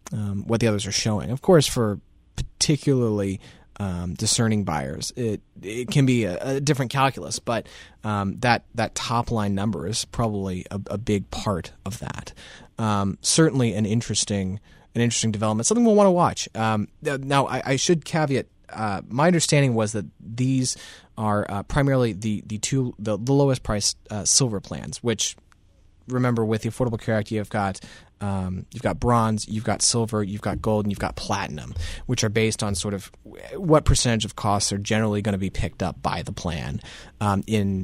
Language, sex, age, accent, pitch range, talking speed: English, male, 30-49, American, 100-120 Hz, 190 wpm